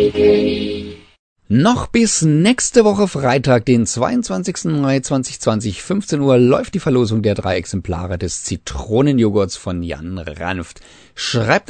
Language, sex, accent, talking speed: German, male, German, 120 wpm